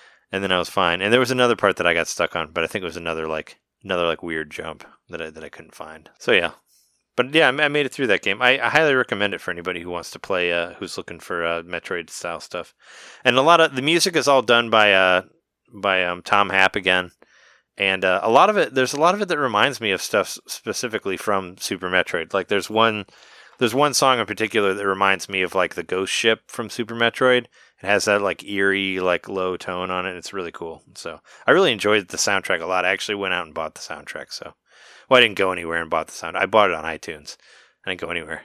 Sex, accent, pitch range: male, American, 90-120 Hz